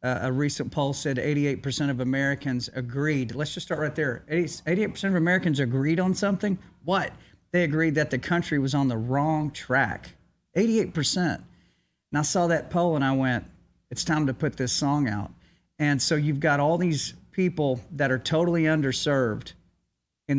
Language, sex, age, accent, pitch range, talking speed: English, male, 40-59, American, 130-155 Hz, 175 wpm